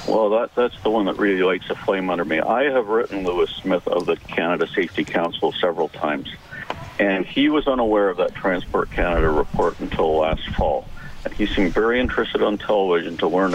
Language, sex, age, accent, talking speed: English, male, 50-69, American, 195 wpm